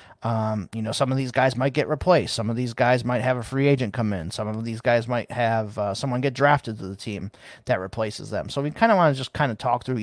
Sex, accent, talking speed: male, American, 285 wpm